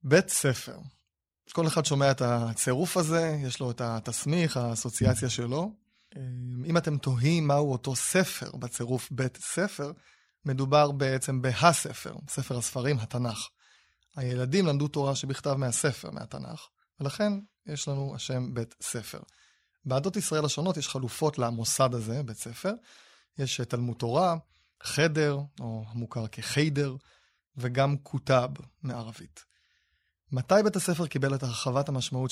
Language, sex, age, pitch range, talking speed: Hebrew, male, 20-39, 125-160 Hz, 125 wpm